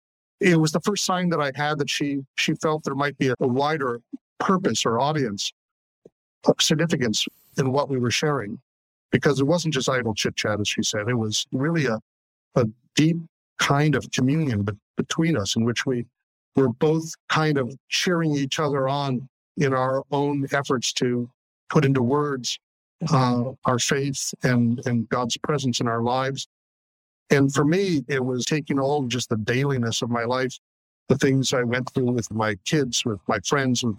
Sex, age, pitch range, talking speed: male, 50-69, 120-150 Hz, 180 wpm